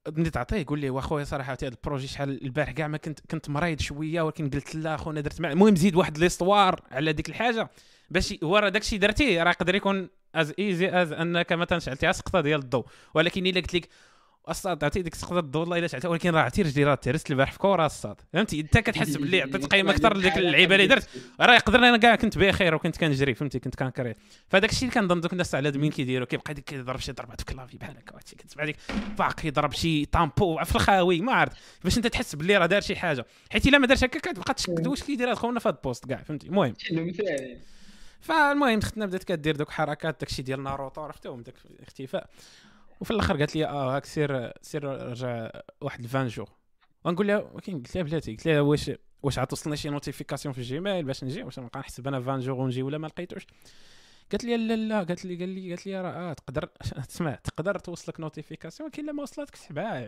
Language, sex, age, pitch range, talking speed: Arabic, male, 20-39, 140-195 Hz, 215 wpm